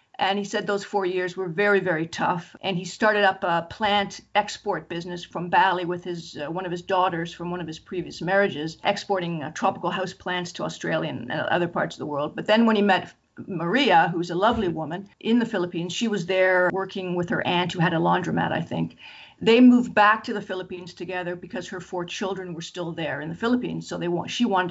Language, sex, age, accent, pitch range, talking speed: English, female, 50-69, American, 175-200 Hz, 225 wpm